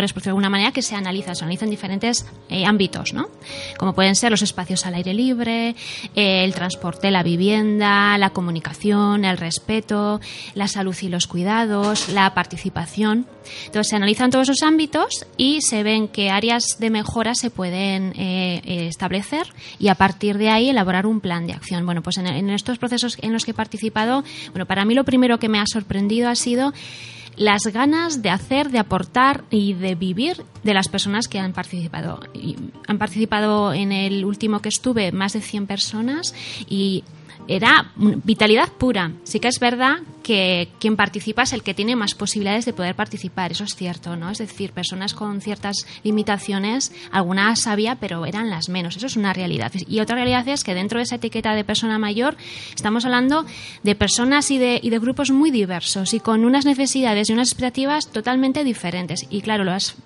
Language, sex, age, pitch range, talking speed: Spanish, female, 20-39, 190-235 Hz, 190 wpm